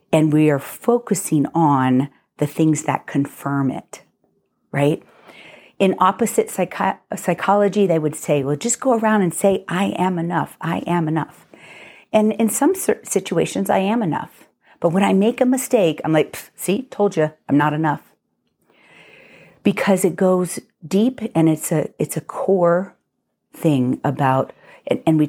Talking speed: 155 wpm